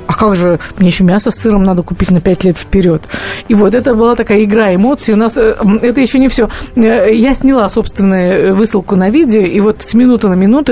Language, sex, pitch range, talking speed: Russian, female, 190-245 Hz, 220 wpm